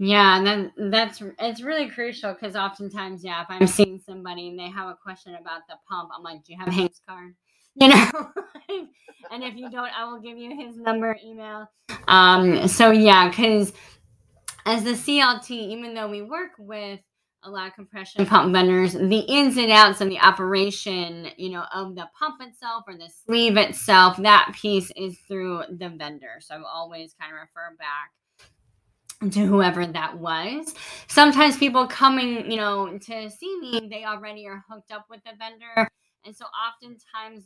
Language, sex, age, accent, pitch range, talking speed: English, female, 20-39, American, 185-225 Hz, 180 wpm